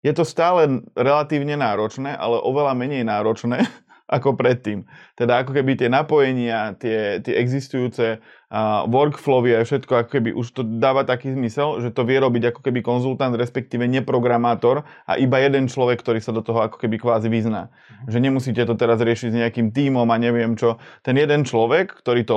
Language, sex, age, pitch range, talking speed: Slovak, male, 20-39, 115-130 Hz, 180 wpm